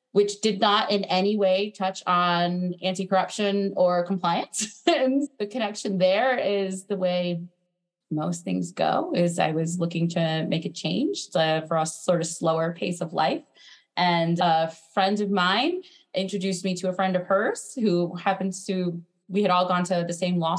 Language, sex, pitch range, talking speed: English, female, 175-205 Hz, 175 wpm